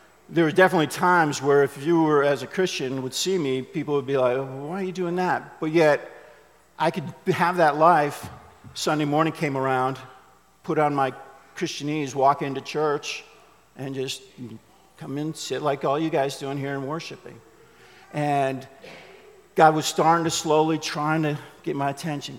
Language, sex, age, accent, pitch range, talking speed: English, male, 50-69, American, 135-165 Hz, 180 wpm